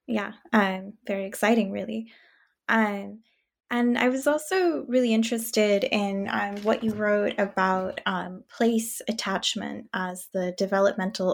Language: English